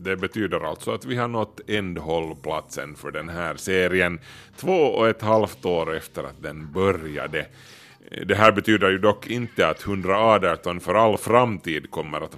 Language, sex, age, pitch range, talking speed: Swedish, male, 30-49, 85-110 Hz, 170 wpm